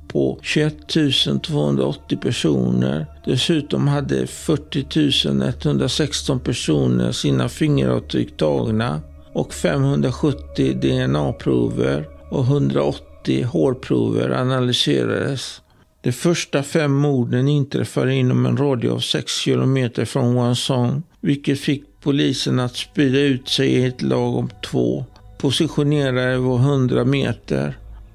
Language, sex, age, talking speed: Swedish, male, 60-79, 100 wpm